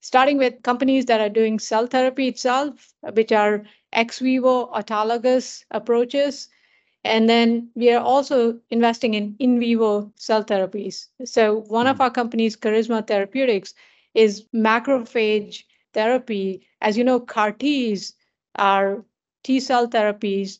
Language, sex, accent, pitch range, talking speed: English, female, Indian, 210-245 Hz, 130 wpm